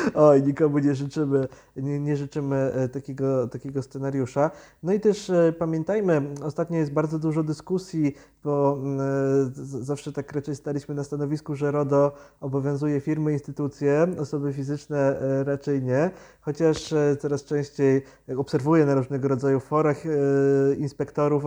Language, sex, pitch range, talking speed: Polish, male, 140-155 Hz, 115 wpm